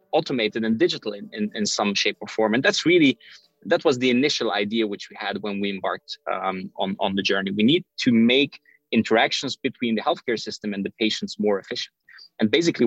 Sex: male